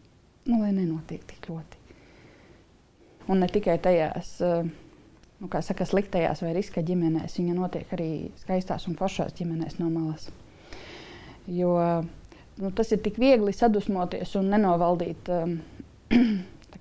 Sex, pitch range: female, 175-210 Hz